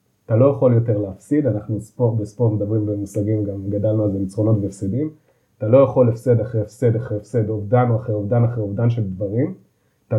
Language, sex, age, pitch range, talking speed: English, male, 30-49, 110-140 Hz, 185 wpm